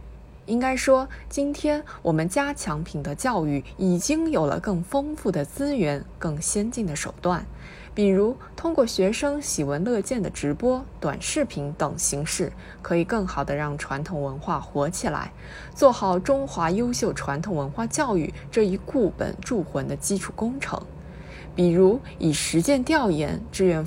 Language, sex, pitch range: Chinese, female, 165-245 Hz